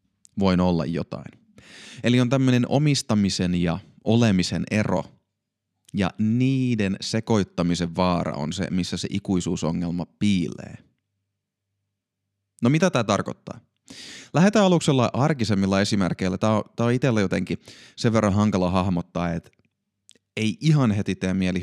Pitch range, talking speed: 95-115 Hz, 120 wpm